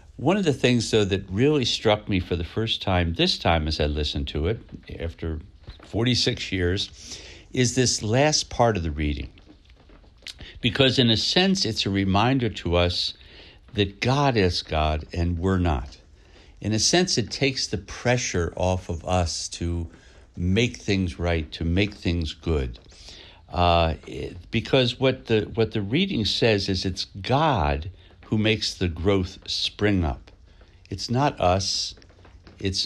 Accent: American